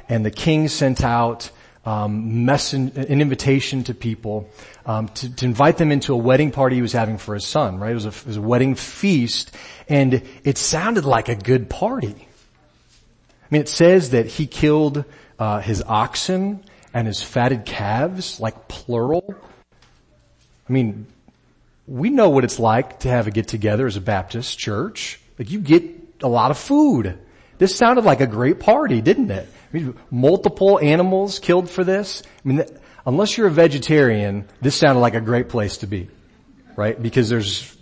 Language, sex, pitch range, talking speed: English, male, 115-155 Hz, 180 wpm